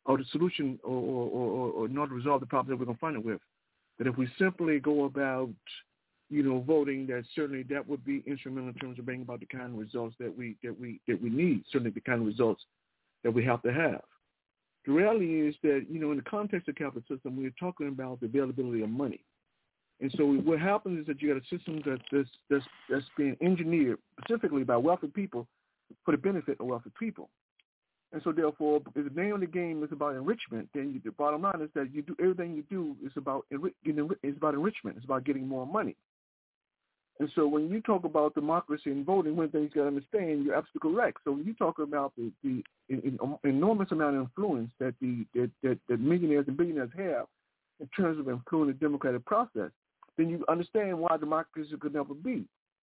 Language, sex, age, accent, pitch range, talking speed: English, male, 50-69, American, 130-165 Hz, 220 wpm